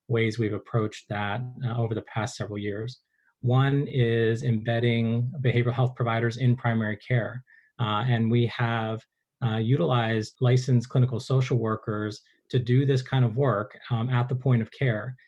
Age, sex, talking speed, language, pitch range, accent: 30-49, male, 160 wpm, English, 110-125 Hz, American